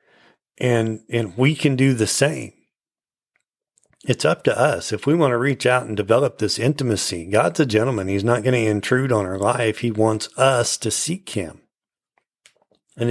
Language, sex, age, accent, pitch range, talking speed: English, male, 40-59, American, 110-145 Hz, 180 wpm